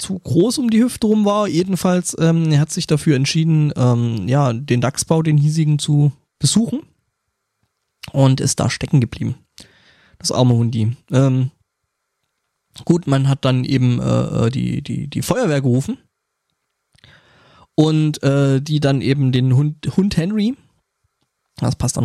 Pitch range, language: 125-155 Hz, German